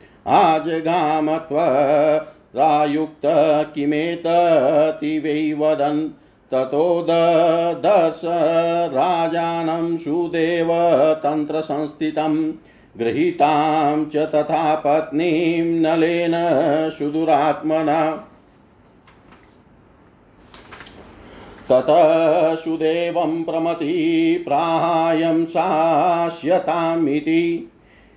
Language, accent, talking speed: Hindi, native, 35 wpm